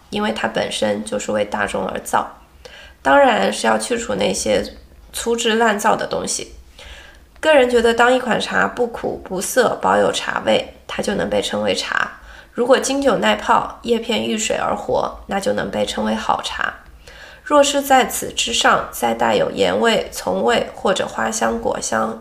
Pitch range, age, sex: 215-260 Hz, 20-39, female